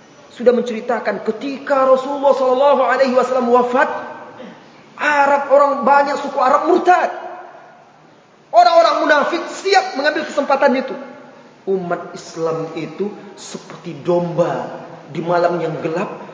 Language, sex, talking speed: Indonesian, male, 100 wpm